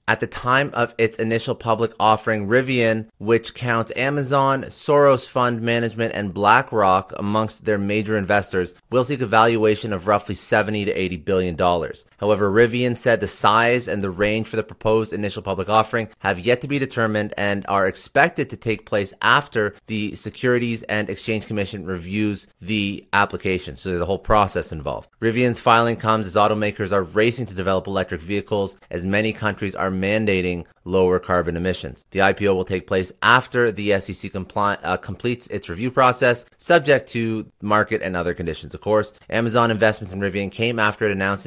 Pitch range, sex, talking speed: 100-115 Hz, male, 170 wpm